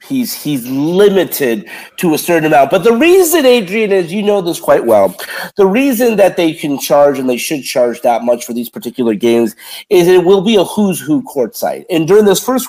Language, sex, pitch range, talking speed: English, male, 170-230 Hz, 220 wpm